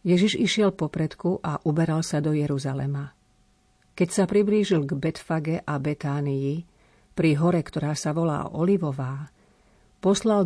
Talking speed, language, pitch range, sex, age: 125 wpm, Slovak, 150-180 Hz, female, 50-69